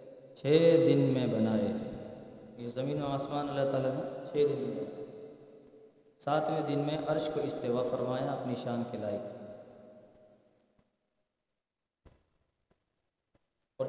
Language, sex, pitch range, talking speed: Urdu, male, 125-155 Hz, 110 wpm